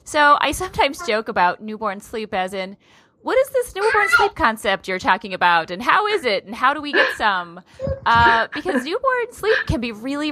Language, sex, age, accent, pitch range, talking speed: English, female, 30-49, American, 185-260 Hz, 205 wpm